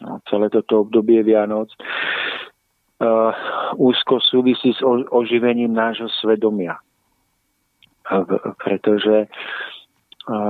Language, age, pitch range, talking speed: Slovak, 40-59, 105-115 Hz, 90 wpm